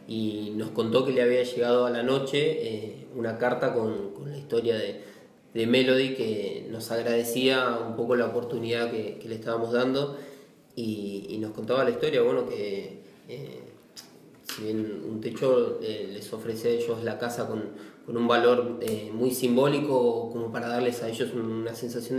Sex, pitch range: male, 110-125 Hz